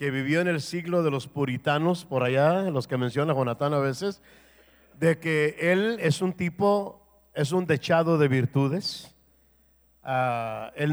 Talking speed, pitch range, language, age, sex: 155 wpm, 135-175 Hz, English, 50-69, male